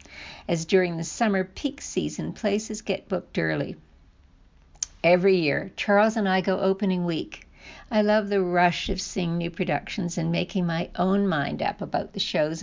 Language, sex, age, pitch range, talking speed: English, female, 60-79, 165-205 Hz, 165 wpm